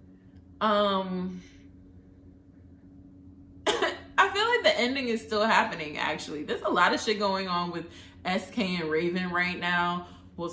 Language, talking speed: English, 135 wpm